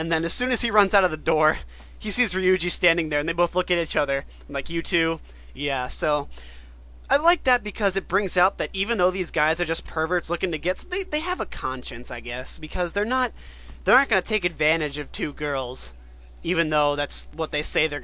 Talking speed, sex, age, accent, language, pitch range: 245 wpm, male, 20-39, American, English, 140-185 Hz